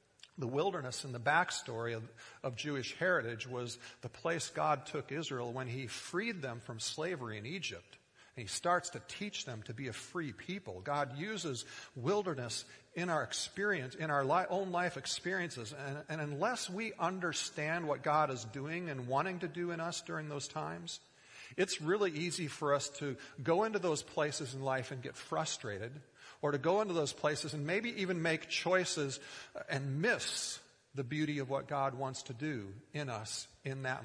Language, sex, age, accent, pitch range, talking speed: English, male, 50-69, American, 130-170 Hz, 180 wpm